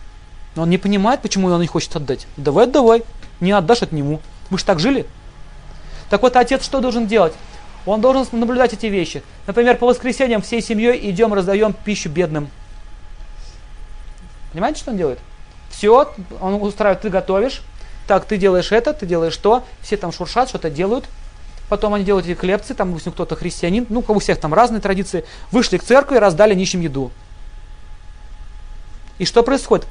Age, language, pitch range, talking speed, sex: 30-49, Russian, 160-230 Hz, 165 wpm, male